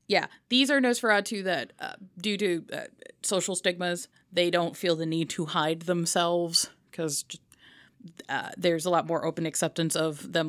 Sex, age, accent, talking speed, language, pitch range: female, 20-39, American, 160 wpm, English, 160-190 Hz